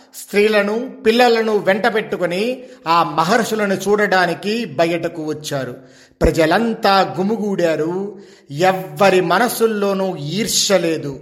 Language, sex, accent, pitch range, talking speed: Telugu, male, native, 165-205 Hz, 75 wpm